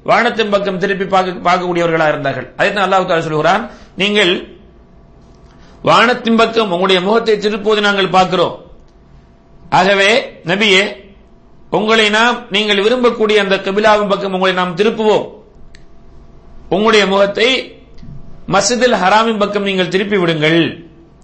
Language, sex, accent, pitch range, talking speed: English, male, Indian, 165-215 Hz, 115 wpm